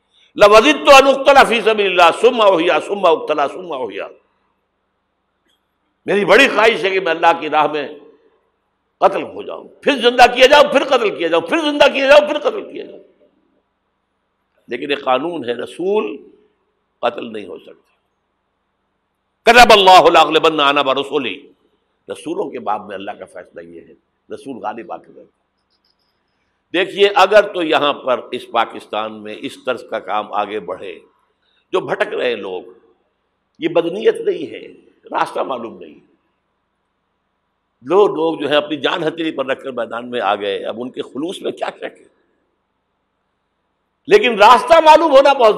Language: Urdu